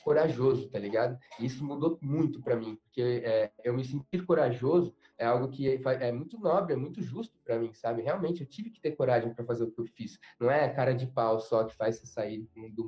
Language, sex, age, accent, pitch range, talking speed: Portuguese, male, 20-39, Brazilian, 120-150 Hz, 240 wpm